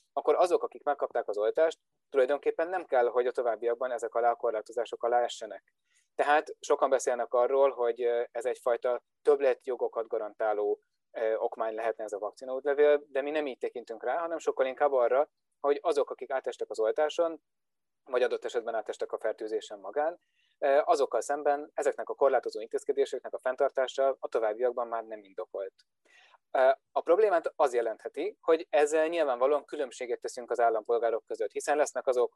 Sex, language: male, Hungarian